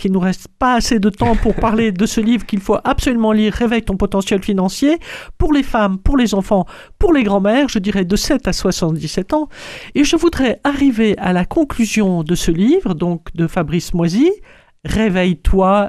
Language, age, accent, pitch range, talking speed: French, 50-69, French, 180-245 Hz, 195 wpm